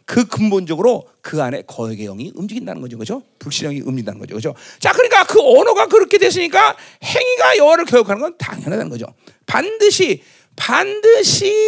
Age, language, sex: 40-59, Korean, male